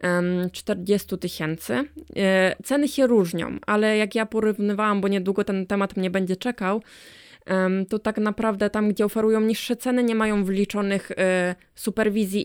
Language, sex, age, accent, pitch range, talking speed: Polish, female, 20-39, native, 190-220 Hz, 135 wpm